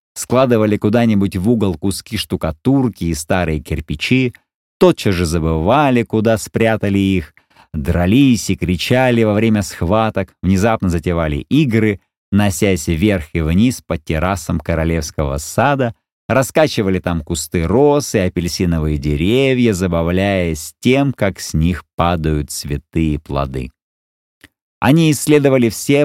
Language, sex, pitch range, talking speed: Russian, male, 85-115 Hz, 115 wpm